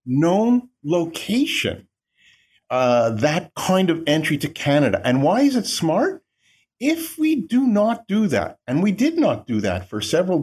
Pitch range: 145-225 Hz